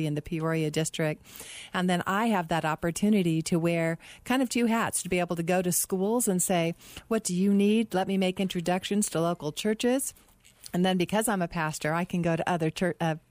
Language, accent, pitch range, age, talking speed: English, American, 165-200 Hz, 40-59, 215 wpm